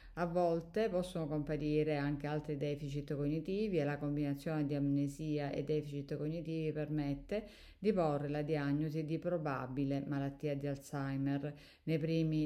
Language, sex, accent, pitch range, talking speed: Italian, female, native, 145-165 Hz, 135 wpm